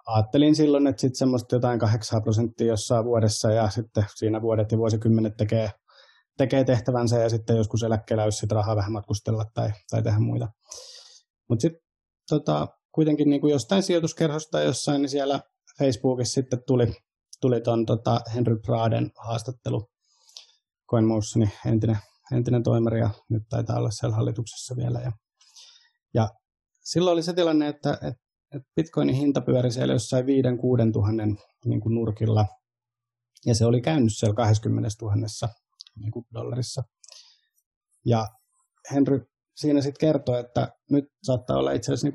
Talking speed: 140 wpm